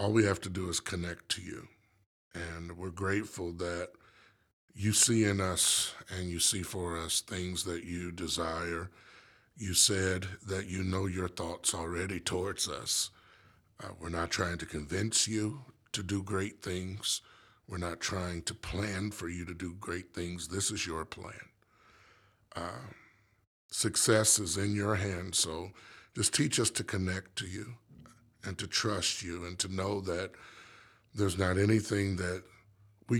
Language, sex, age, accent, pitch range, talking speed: English, male, 50-69, American, 85-105 Hz, 160 wpm